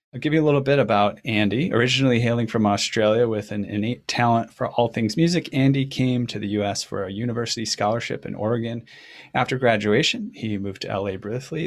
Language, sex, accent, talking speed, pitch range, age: English, male, American, 195 wpm, 105-135 Hz, 30-49